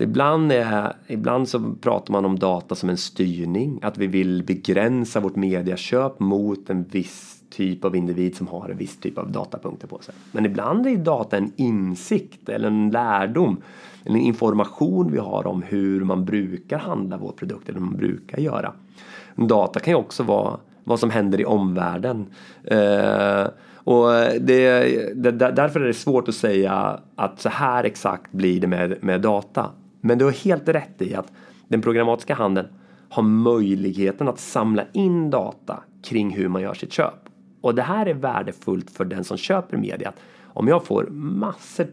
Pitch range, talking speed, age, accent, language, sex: 95-120 Hz, 175 wpm, 30-49, native, Swedish, male